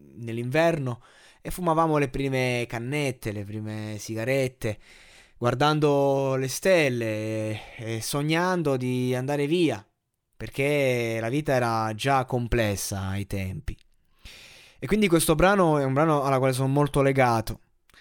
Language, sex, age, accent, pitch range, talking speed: Italian, male, 20-39, native, 115-150 Hz, 125 wpm